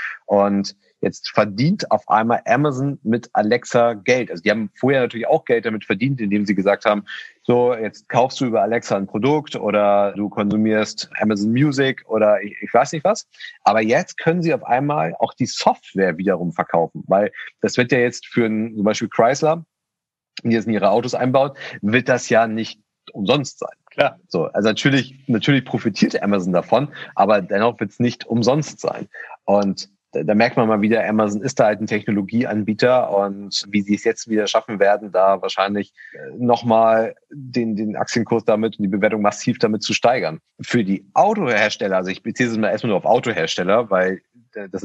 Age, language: 40-59, German